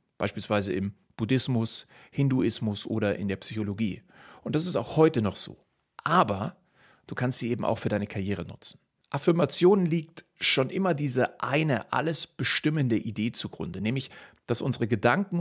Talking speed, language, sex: 150 wpm, German, male